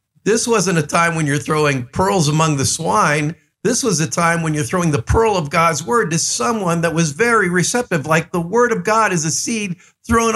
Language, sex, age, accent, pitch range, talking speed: English, male, 50-69, American, 140-185 Hz, 220 wpm